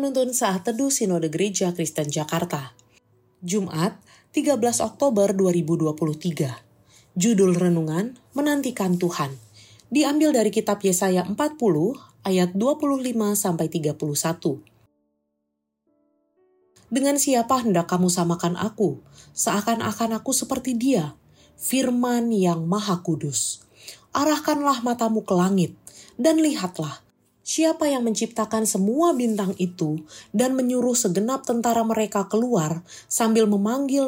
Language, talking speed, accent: Indonesian, 100 wpm, native